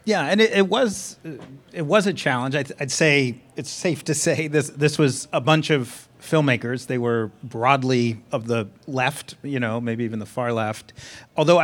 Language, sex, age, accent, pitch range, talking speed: English, male, 40-59, American, 120-150 Hz, 190 wpm